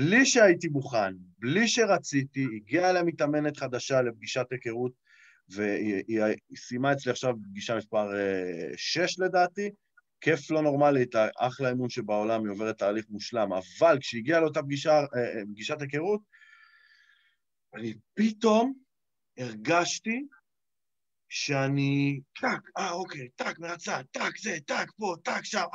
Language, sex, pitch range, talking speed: Hebrew, male, 135-190 Hz, 120 wpm